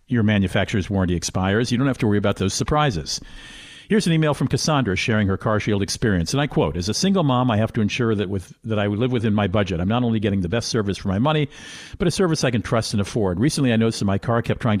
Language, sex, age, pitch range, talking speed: English, male, 50-69, 100-130 Hz, 270 wpm